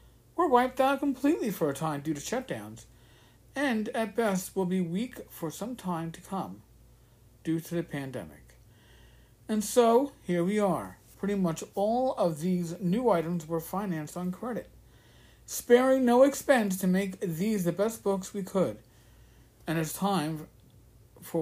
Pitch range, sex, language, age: 155-225 Hz, male, English, 50-69